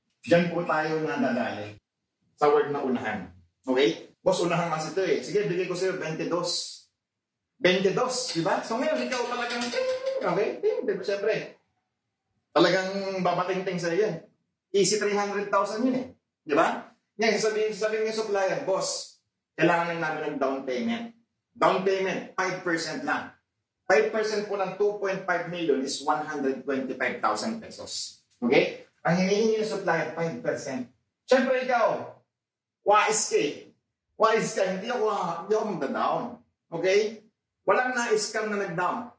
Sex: male